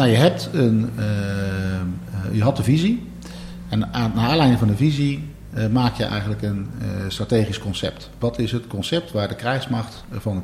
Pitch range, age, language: 95-125 Hz, 50-69, Dutch